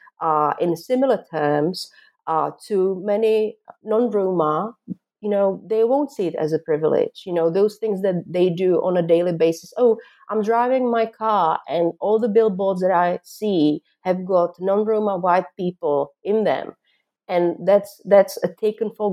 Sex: female